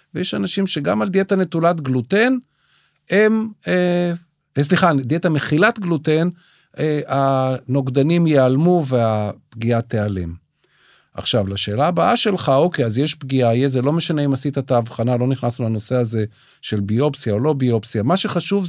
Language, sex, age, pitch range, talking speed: Hebrew, male, 40-59, 125-175 Hz, 140 wpm